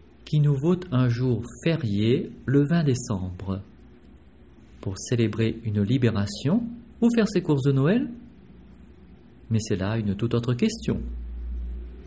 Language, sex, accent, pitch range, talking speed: French, male, French, 110-135 Hz, 130 wpm